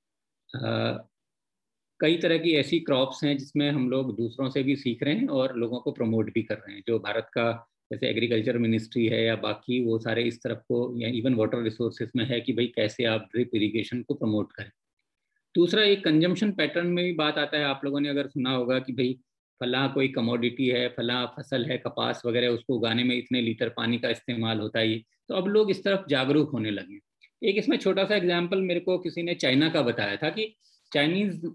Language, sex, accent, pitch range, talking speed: Hindi, male, native, 120-170 Hz, 215 wpm